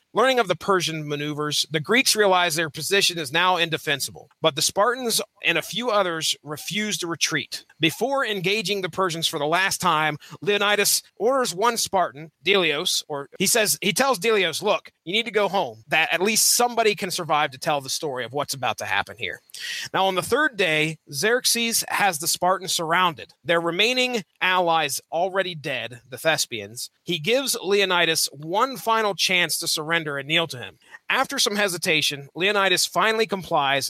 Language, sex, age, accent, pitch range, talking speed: English, male, 30-49, American, 155-205 Hz, 175 wpm